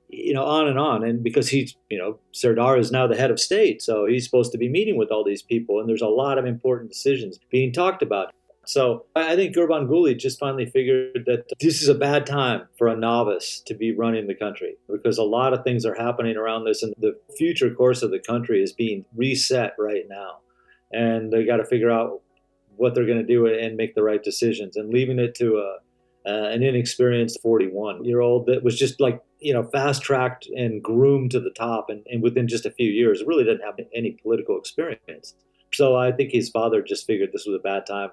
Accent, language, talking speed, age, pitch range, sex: American, English, 225 wpm, 50-69, 115-145 Hz, male